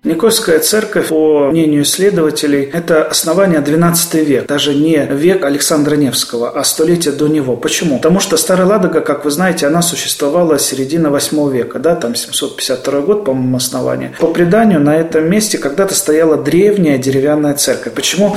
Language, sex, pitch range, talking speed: Russian, male, 145-175 Hz, 155 wpm